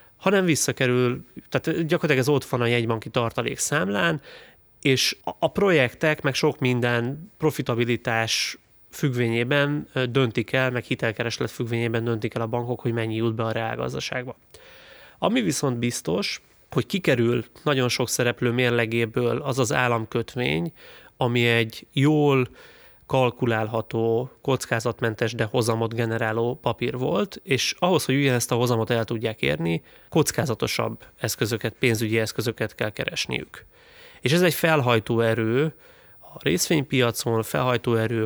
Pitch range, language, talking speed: 115-135 Hz, Hungarian, 125 wpm